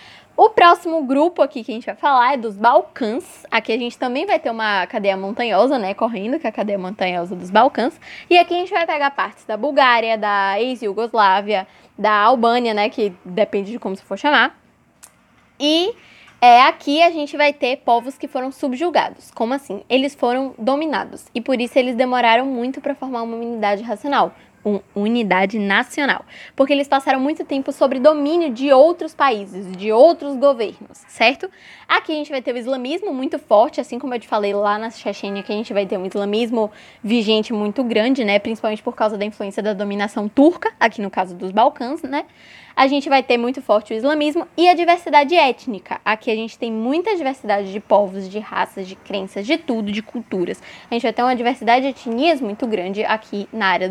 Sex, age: female, 10-29